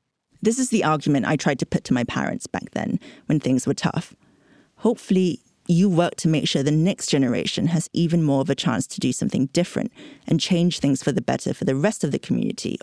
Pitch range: 145-195 Hz